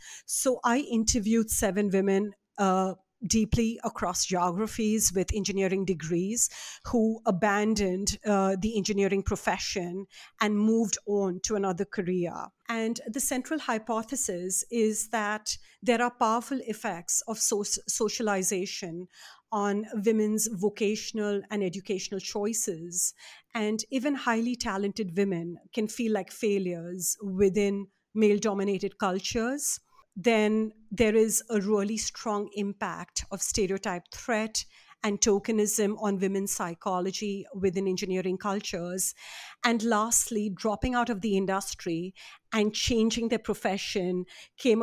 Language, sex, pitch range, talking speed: English, female, 195-225 Hz, 110 wpm